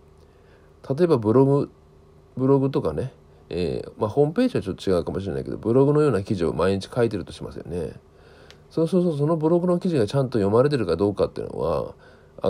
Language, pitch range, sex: Japanese, 80-130 Hz, male